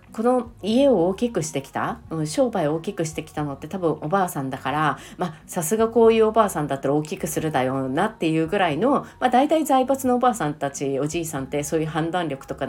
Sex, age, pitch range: female, 40-59, 155-210 Hz